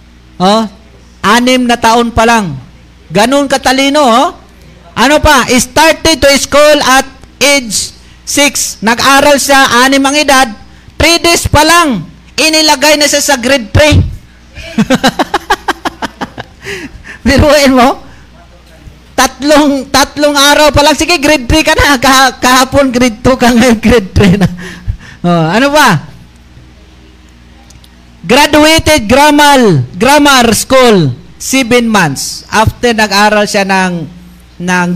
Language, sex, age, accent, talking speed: Filipino, male, 40-59, native, 115 wpm